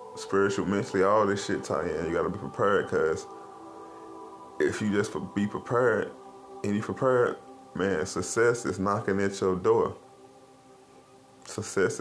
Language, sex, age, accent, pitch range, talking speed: English, male, 20-39, American, 95-130 Hz, 145 wpm